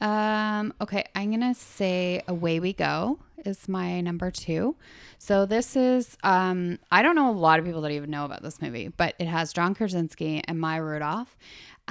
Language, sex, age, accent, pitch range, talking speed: English, female, 20-39, American, 155-180 Hz, 185 wpm